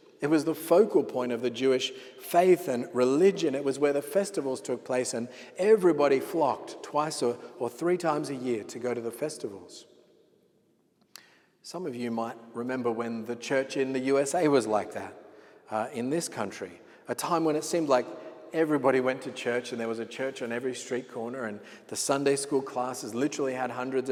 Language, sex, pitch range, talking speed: English, male, 120-155 Hz, 195 wpm